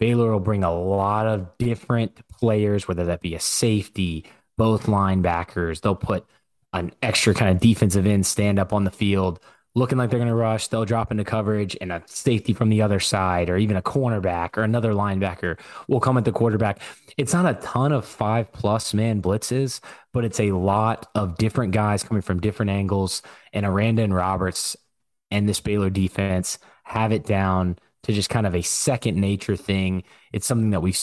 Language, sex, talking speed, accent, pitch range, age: English, male, 195 wpm, American, 95-115 Hz, 20-39